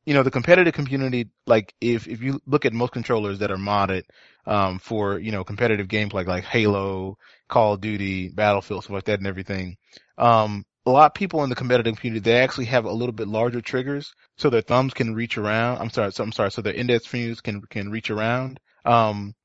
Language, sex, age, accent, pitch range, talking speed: English, male, 20-39, American, 105-125 Hz, 220 wpm